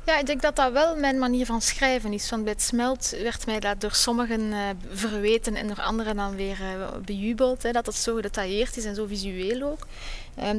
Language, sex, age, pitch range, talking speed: Dutch, female, 20-39, 210-240 Hz, 225 wpm